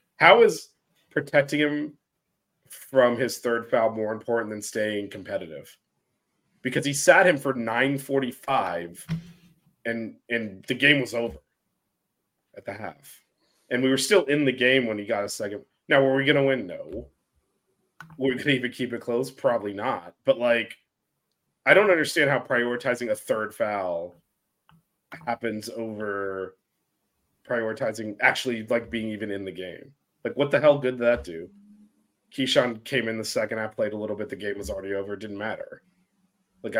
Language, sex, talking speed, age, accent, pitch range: English, male, 170 wpm, 30-49, American, 110-140 Hz